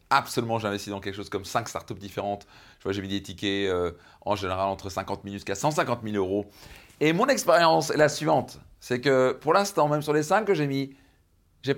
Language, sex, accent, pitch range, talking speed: French, male, French, 105-140 Hz, 220 wpm